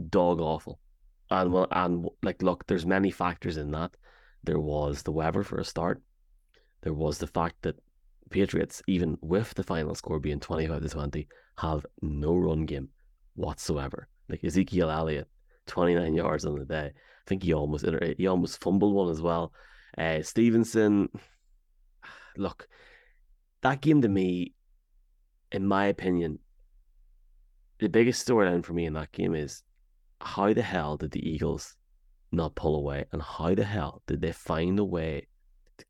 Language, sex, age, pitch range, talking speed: English, male, 30-49, 75-95 Hz, 160 wpm